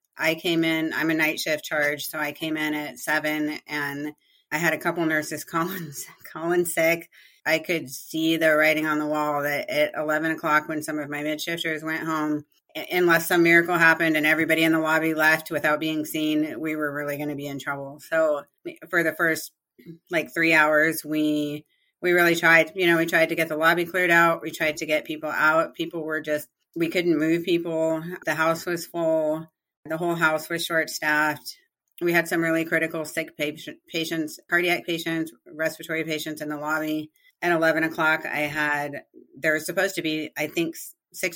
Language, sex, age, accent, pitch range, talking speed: English, female, 30-49, American, 155-165 Hz, 195 wpm